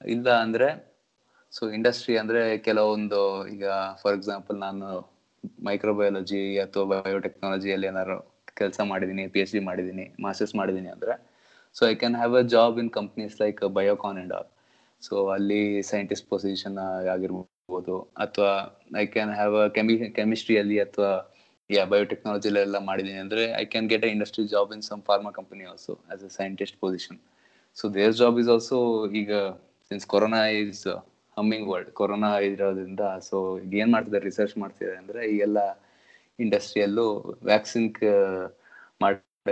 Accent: native